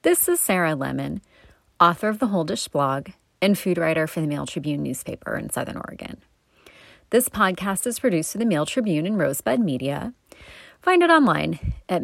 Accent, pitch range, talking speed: American, 165-220 Hz, 180 wpm